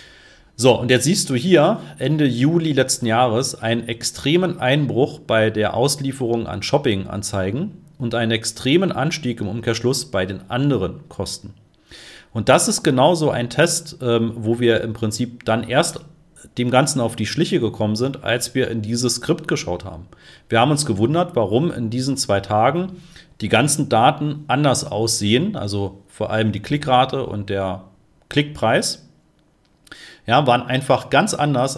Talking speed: 155 wpm